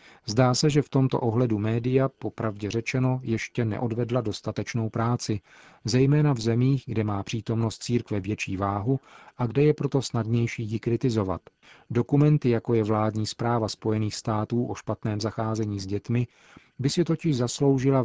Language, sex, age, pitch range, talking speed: Czech, male, 40-59, 110-125 Hz, 150 wpm